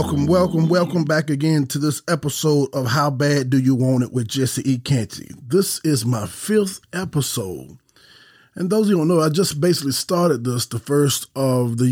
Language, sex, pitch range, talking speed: English, male, 120-145 Hz, 200 wpm